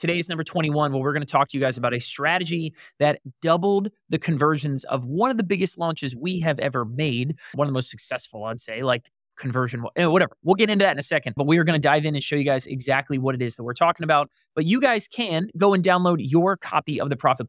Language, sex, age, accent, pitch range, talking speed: English, male, 20-39, American, 130-170 Hz, 255 wpm